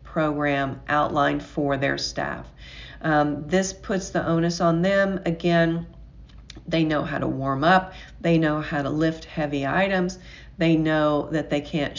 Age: 50-69